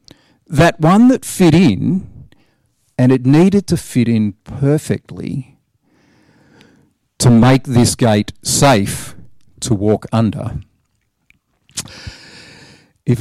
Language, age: English, 50-69